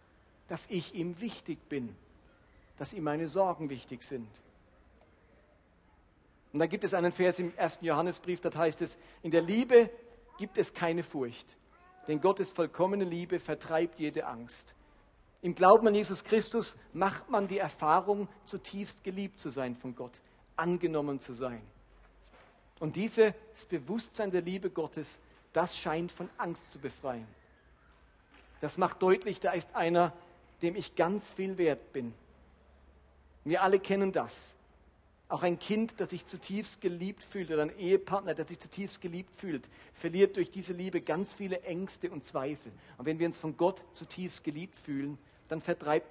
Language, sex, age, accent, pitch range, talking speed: German, male, 50-69, German, 145-195 Hz, 155 wpm